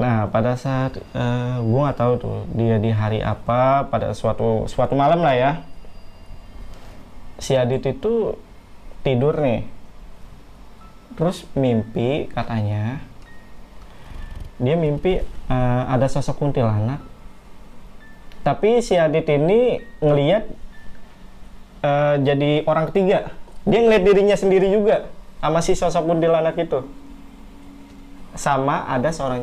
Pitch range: 115-160 Hz